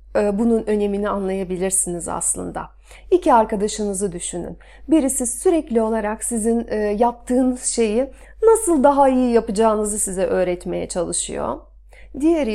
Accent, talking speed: native, 100 wpm